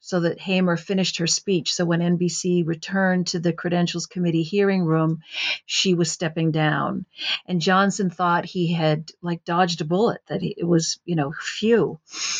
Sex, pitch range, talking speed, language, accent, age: female, 165-185 Hz, 170 wpm, English, American, 50-69